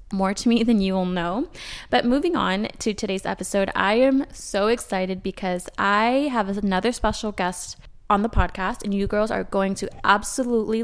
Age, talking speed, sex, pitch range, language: 20-39, 185 wpm, female, 195-235 Hz, English